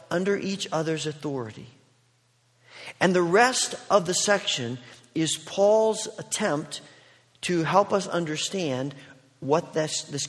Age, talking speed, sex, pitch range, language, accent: 40-59, 115 wpm, male, 130-190 Hz, English, American